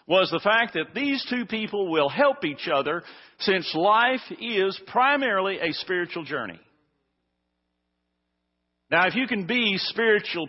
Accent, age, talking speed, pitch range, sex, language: American, 50-69, 135 wpm, 140-200 Hz, male, English